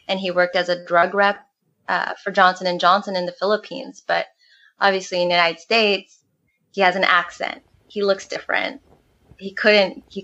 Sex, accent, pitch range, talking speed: female, American, 175-215 Hz, 180 wpm